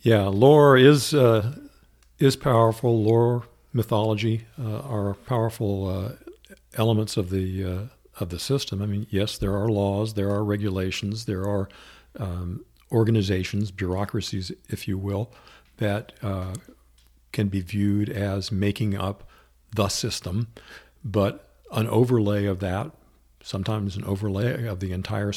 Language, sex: English, male